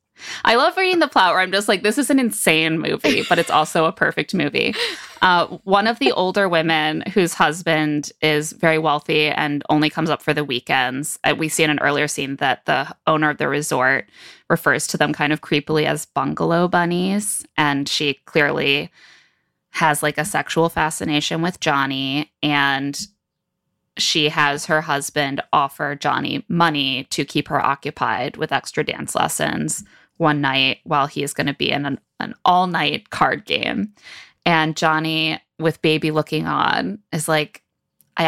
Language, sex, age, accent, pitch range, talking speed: English, female, 20-39, American, 150-170 Hz, 170 wpm